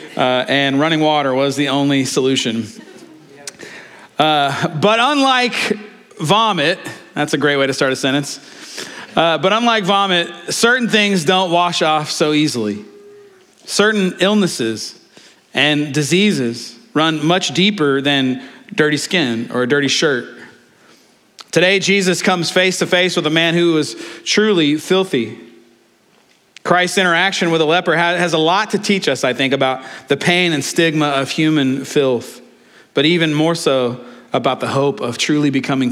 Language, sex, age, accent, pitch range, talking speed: English, male, 40-59, American, 135-185 Hz, 150 wpm